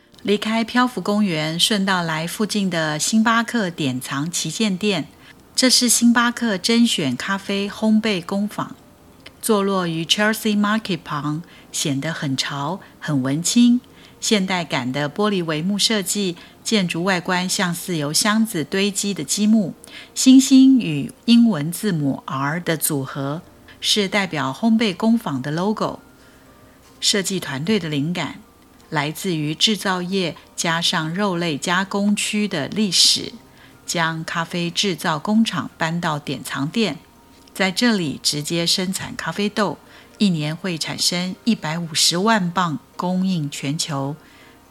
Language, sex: Chinese, female